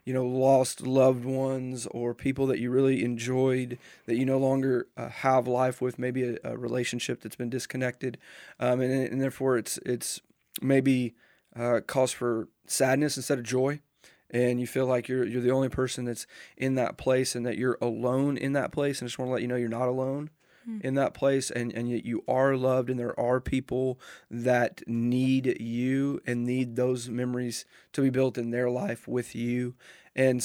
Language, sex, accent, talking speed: English, male, American, 195 wpm